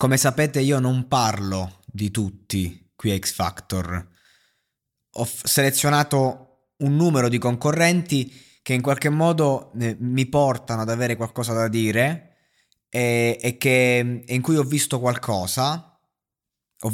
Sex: male